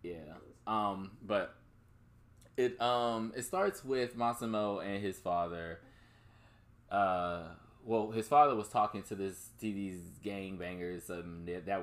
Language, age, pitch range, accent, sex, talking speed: English, 20-39, 90-115 Hz, American, male, 130 wpm